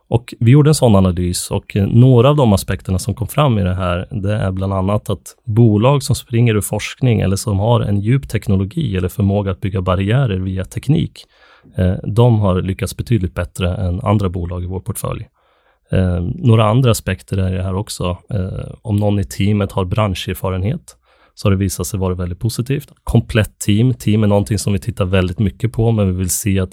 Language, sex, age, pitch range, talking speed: Swedish, male, 30-49, 95-110 Hz, 200 wpm